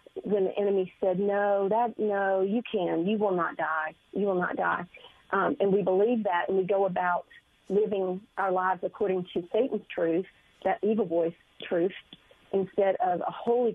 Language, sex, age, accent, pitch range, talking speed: English, female, 40-59, American, 185-215 Hz, 180 wpm